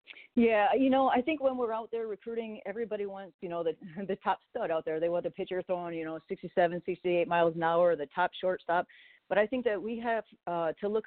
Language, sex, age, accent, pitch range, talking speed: English, female, 40-59, American, 170-205 Hz, 240 wpm